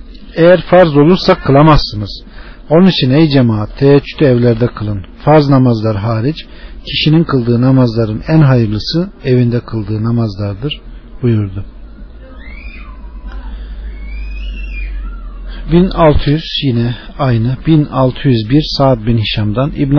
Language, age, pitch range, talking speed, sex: Turkish, 50-69, 115-155 Hz, 95 wpm, male